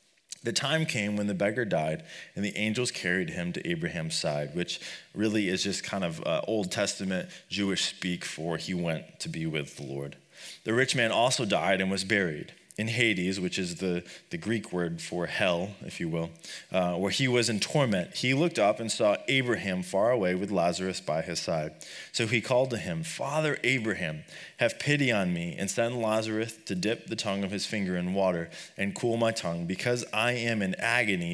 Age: 30-49